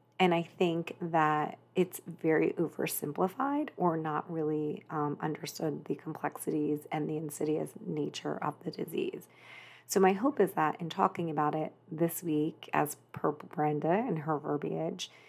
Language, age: English, 30-49